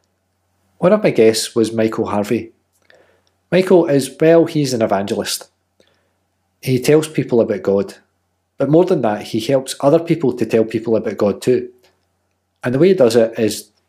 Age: 40-59